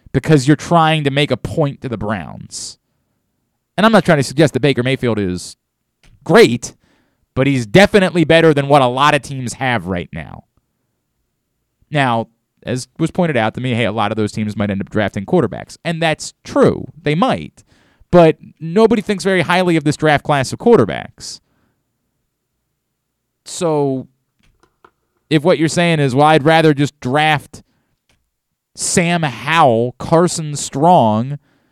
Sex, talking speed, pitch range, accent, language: male, 155 wpm, 125-160 Hz, American, English